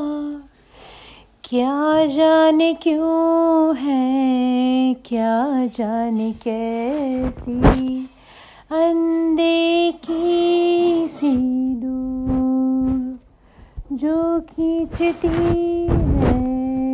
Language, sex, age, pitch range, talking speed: Hindi, female, 30-49, 250-330 Hz, 50 wpm